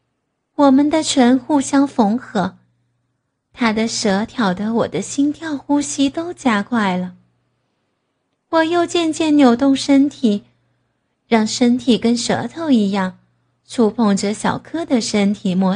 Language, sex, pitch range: Chinese, female, 185-265 Hz